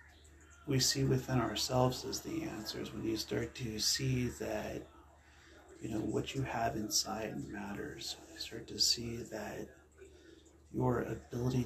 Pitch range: 85-125 Hz